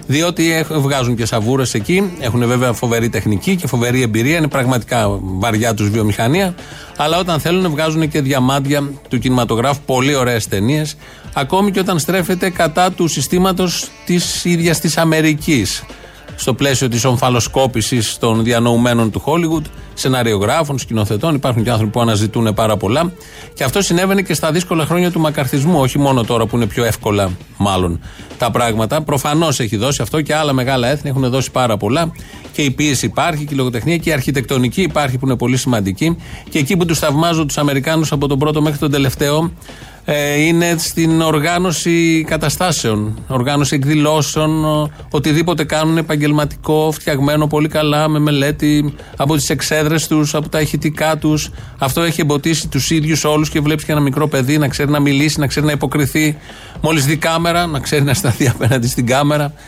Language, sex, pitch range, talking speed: Greek, male, 125-160 Hz, 170 wpm